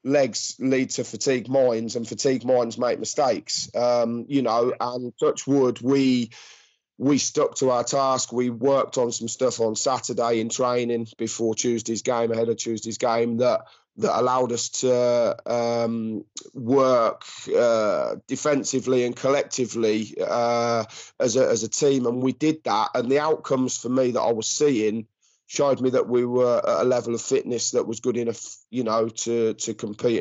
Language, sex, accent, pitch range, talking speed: English, male, British, 115-135 Hz, 175 wpm